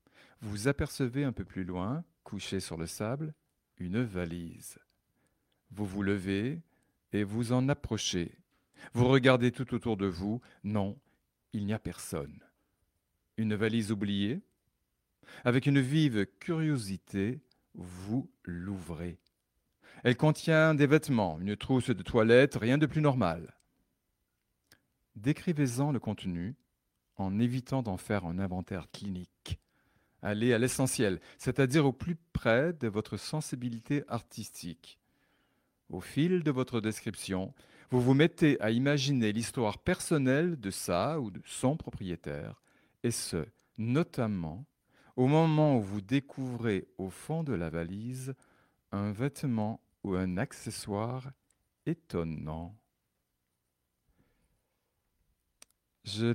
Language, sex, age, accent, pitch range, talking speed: French, male, 50-69, French, 95-135 Hz, 115 wpm